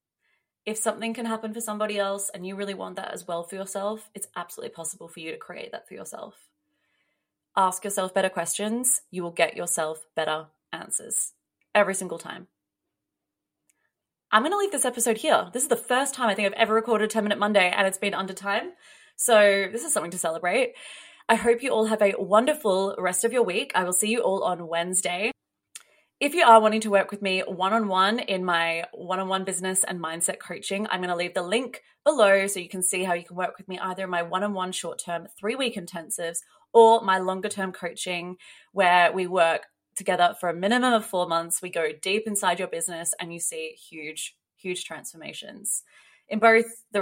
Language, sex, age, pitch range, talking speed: English, female, 20-39, 175-220 Hz, 210 wpm